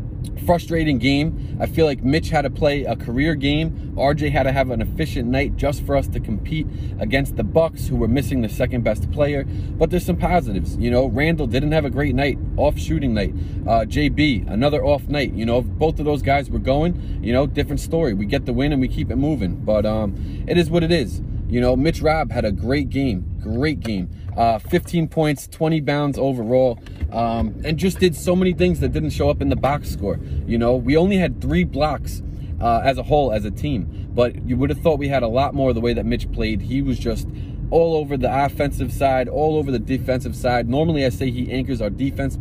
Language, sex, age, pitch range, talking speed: English, male, 20-39, 105-145 Hz, 230 wpm